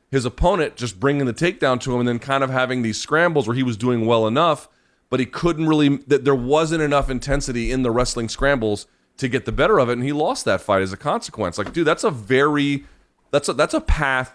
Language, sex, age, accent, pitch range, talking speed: English, male, 30-49, American, 115-150 Hz, 245 wpm